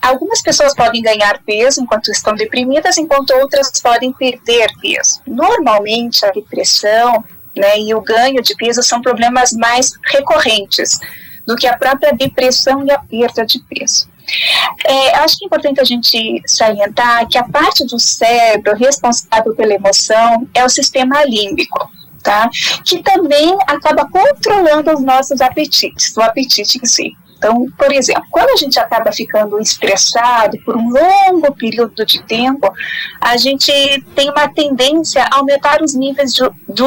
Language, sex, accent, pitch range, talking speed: Portuguese, female, Brazilian, 230-290 Hz, 155 wpm